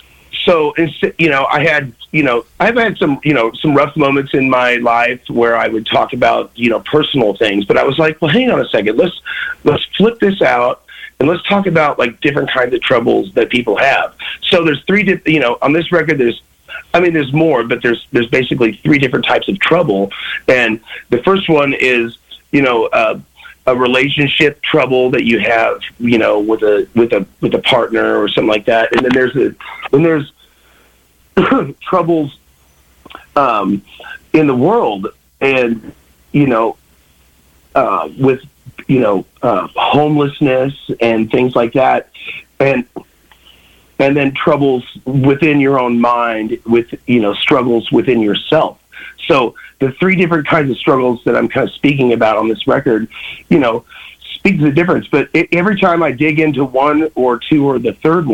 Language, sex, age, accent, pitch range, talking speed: English, male, 30-49, American, 115-160 Hz, 180 wpm